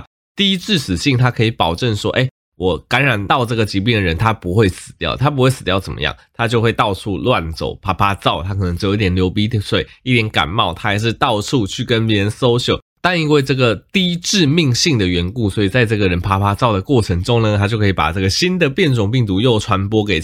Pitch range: 100-135 Hz